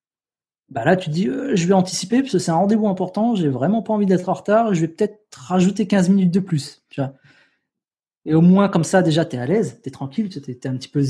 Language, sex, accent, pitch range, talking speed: French, male, French, 140-180 Hz, 265 wpm